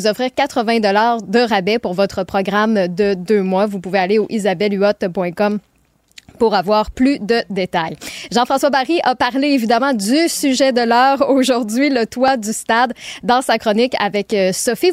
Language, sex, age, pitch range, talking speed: French, female, 20-39, 215-265 Hz, 155 wpm